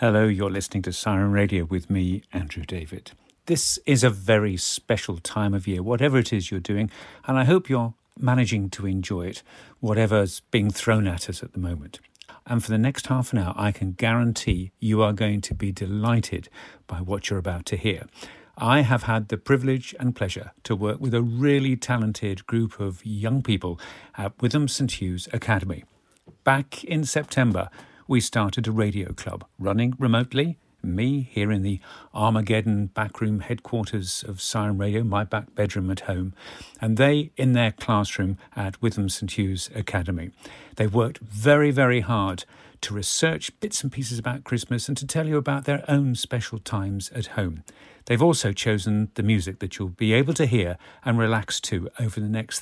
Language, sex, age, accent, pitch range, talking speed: English, male, 50-69, British, 100-125 Hz, 180 wpm